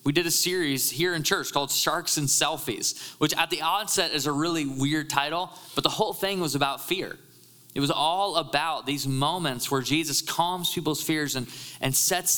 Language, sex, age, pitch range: English, male, 20-39, 130-155 Hz